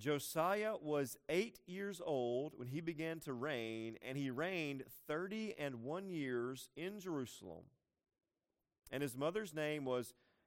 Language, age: English, 40-59